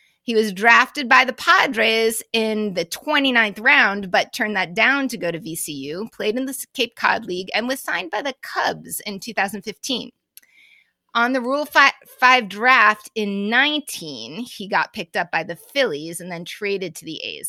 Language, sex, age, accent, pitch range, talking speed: English, female, 30-49, American, 210-270 Hz, 180 wpm